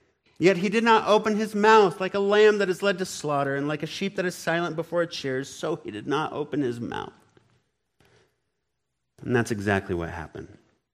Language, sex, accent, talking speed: English, male, American, 205 wpm